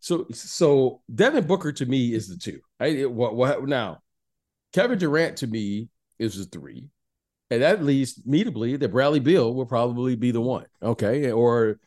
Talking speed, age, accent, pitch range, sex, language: 175 wpm, 40-59, American, 115-140 Hz, male, English